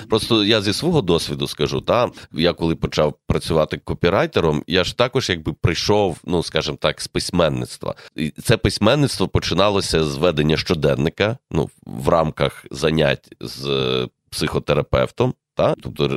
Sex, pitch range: male, 70-95 Hz